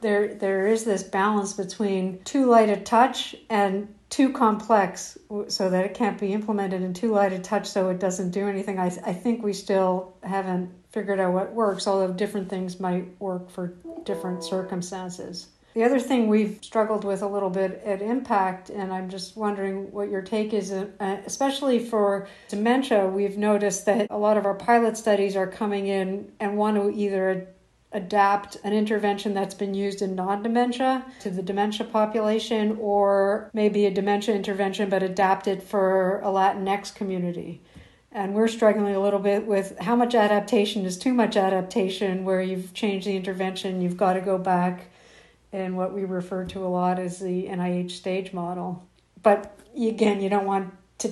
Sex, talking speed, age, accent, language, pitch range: female, 180 wpm, 60-79, American, English, 190-210 Hz